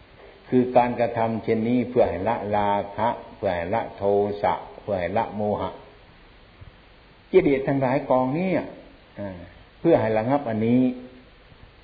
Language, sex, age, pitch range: Thai, male, 60-79, 100-125 Hz